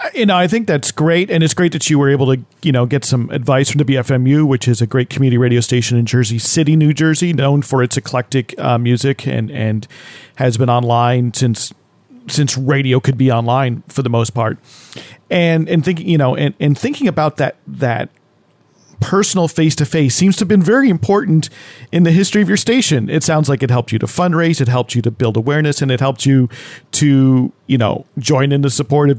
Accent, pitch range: American, 125-160 Hz